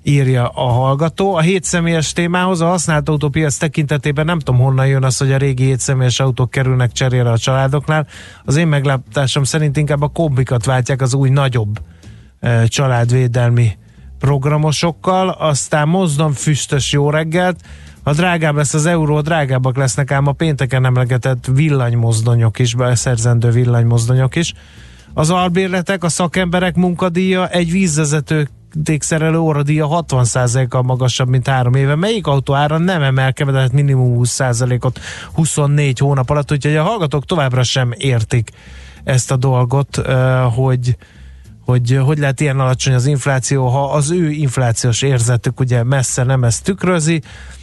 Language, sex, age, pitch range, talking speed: Hungarian, male, 30-49, 125-155 Hz, 135 wpm